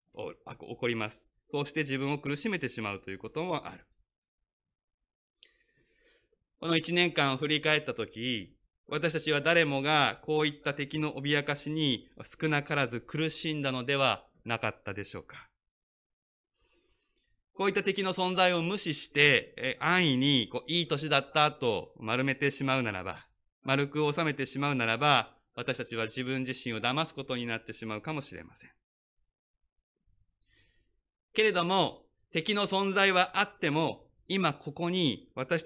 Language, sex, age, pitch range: Japanese, male, 20-39, 125-165 Hz